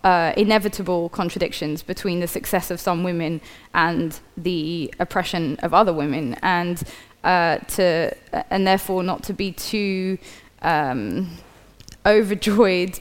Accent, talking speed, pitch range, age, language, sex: British, 125 wpm, 170-190 Hz, 20-39, English, female